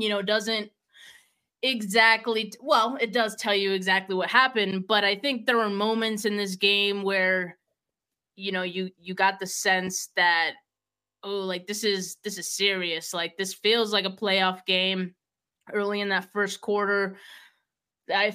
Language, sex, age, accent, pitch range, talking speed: English, female, 20-39, American, 190-225 Hz, 165 wpm